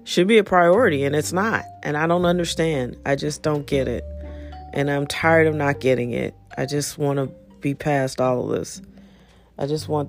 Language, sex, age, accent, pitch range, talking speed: English, female, 40-59, American, 135-160 Hz, 210 wpm